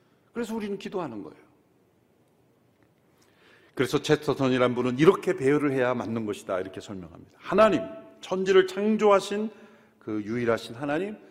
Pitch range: 135-185 Hz